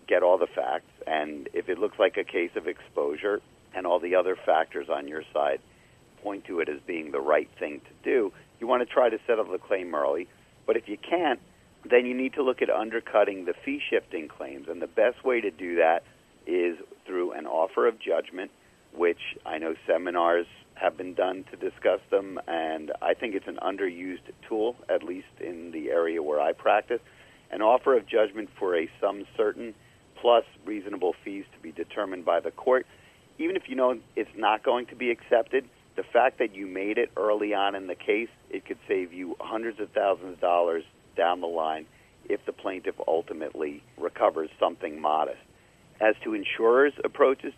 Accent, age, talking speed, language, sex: American, 40-59, 195 wpm, English, male